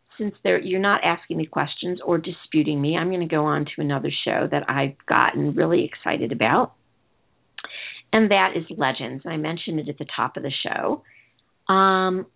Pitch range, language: 170-215 Hz, English